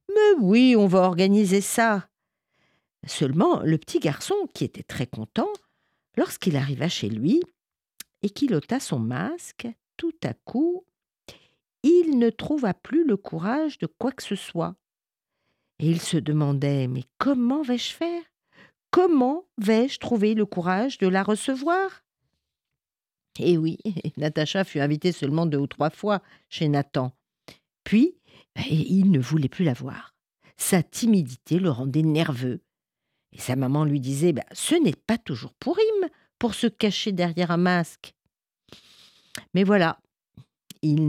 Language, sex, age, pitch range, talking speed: French, female, 50-69, 150-240 Hz, 145 wpm